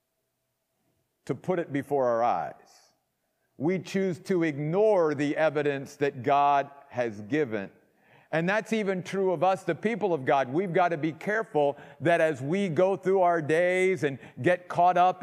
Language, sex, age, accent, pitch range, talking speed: English, male, 50-69, American, 145-190 Hz, 165 wpm